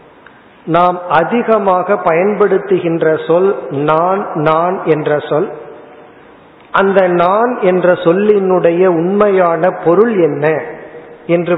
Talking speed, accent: 85 wpm, native